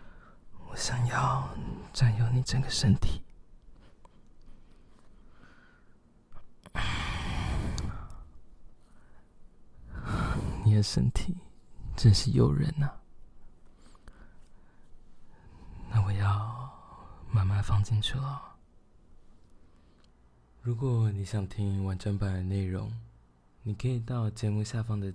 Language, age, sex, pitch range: Chinese, 20-39, male, 90-110 Hz